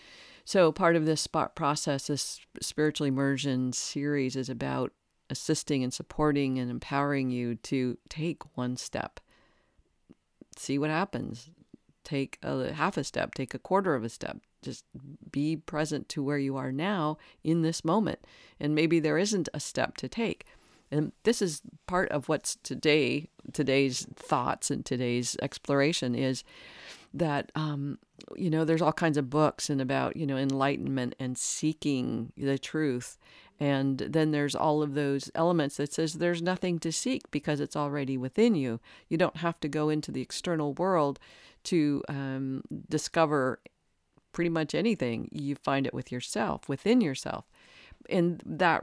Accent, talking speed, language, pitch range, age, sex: American, 155 wpm, English, 135-160 Hz, 50-69, female